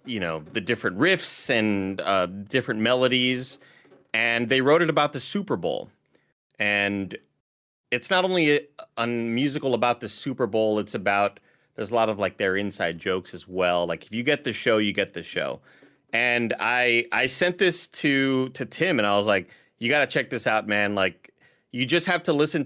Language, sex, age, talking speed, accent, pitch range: English, male, 30-49, 200 wpm, American, 100-135 Hz